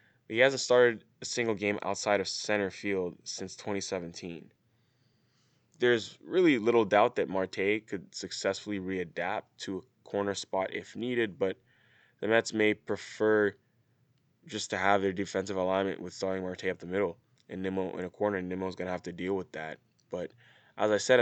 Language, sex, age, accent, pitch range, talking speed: English, male, 10-29, American, 95-115 Hz, 175 wpm